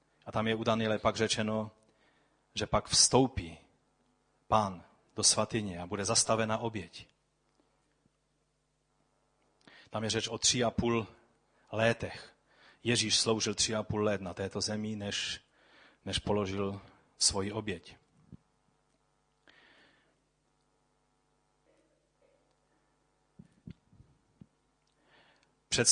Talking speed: 90 wpm